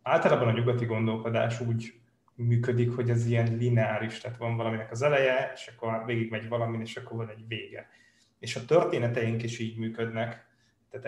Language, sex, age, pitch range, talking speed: Hungarian, male, 20-39, 115-125 Hz, 170 wpm